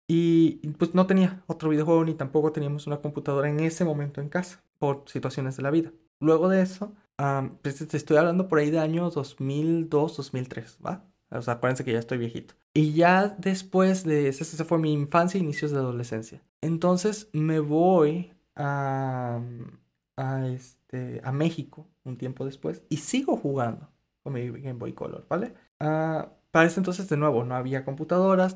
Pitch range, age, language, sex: 130-165 Hz, 20-39, Spanish, male